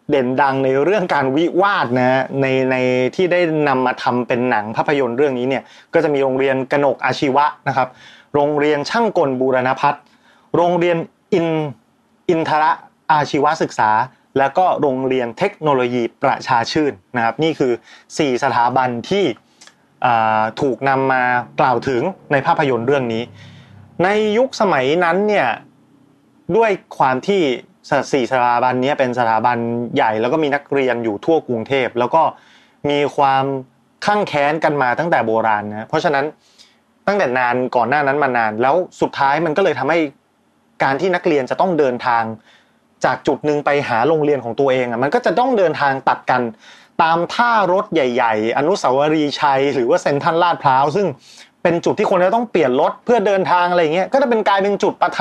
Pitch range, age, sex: 125-170 Hz, 30-49, male